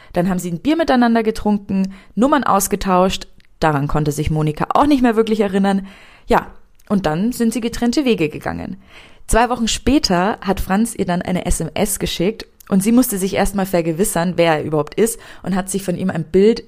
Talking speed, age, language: 190 wpm, 20-39, German